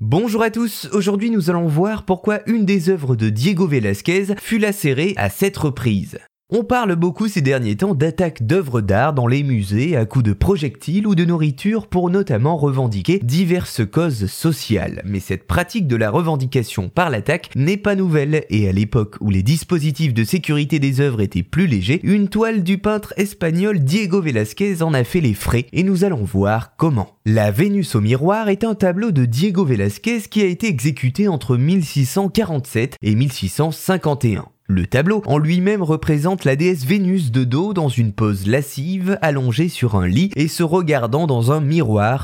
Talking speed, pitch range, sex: 180 wpm, 125-190 Hz, male